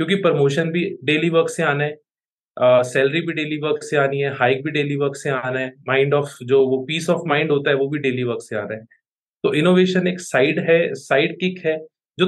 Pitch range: 135-165 Hz